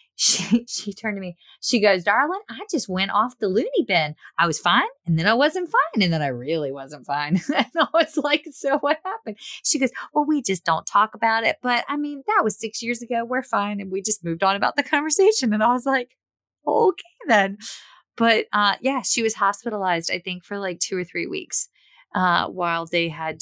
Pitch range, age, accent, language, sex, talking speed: 175-225 Hz, 30-49, American, English, female, 225 wpm